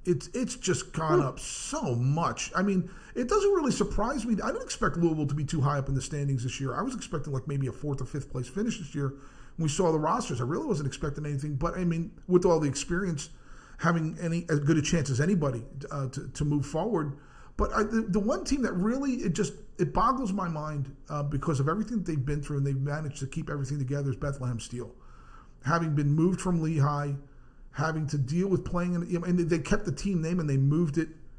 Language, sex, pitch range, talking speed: English, male, 140-185 Hz, 240 wpm